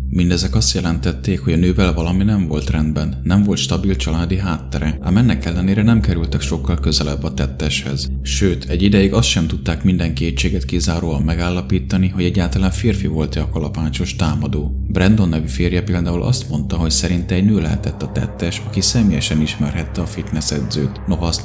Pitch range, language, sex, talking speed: 75-95 Hz, Hungarian, male, 170 wpm